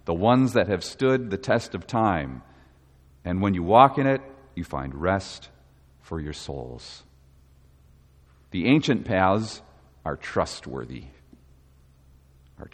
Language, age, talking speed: English, 40-59, 125 wpm